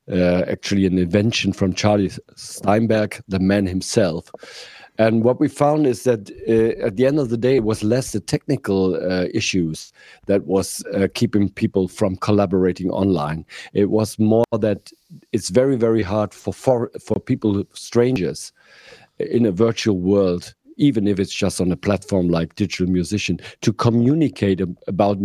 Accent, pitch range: German, 100-125 Hz